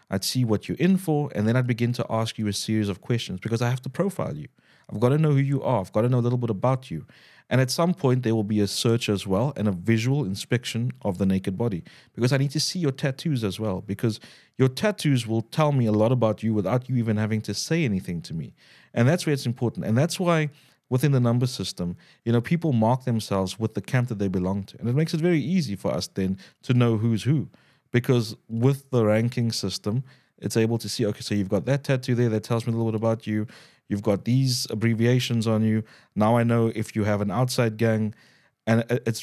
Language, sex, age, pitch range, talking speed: English, male, 30-49, 105-130 Hz, 250 wpm